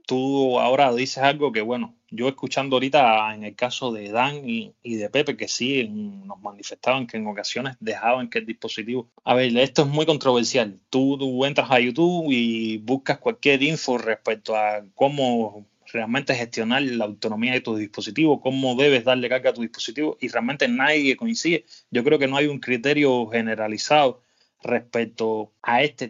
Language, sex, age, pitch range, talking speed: Spanish, male, 20-39, 115-145 Hz, 175 wpm